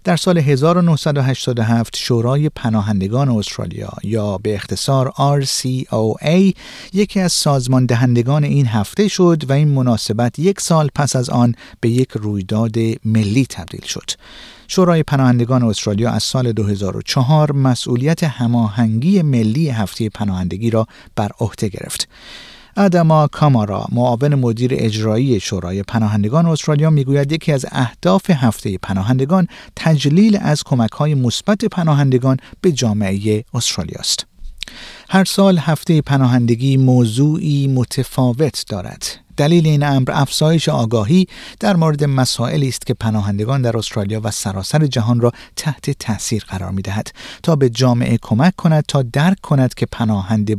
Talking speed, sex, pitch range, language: 125 wpm, male, 115-155 Hz, Persian